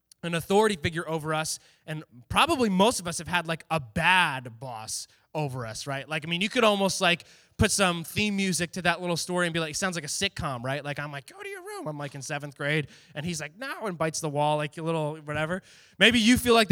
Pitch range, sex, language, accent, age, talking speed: 150-185 Hz, male, English, American, 20-39, 255 wpm